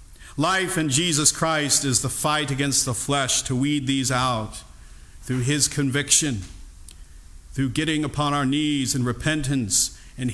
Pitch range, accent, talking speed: 115-150 Hz, American, 145 wpm